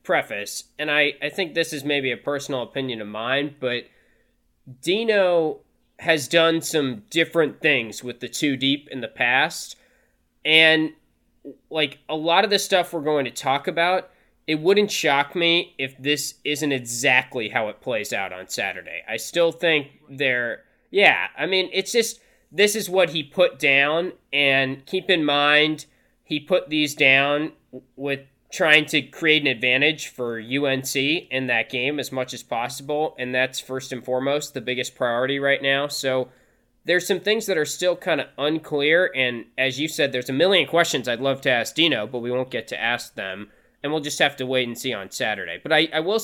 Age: 20-39